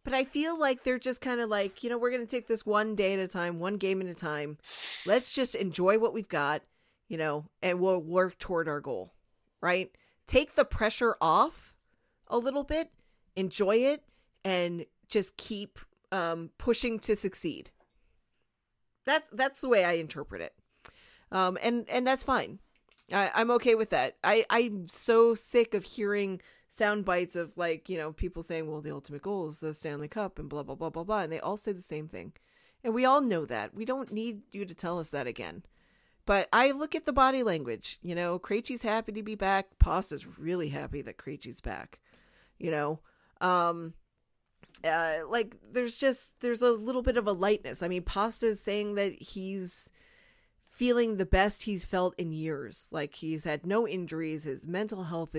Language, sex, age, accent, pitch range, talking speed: English, female, 40-59, American, 165-230 Hz, 190 wpm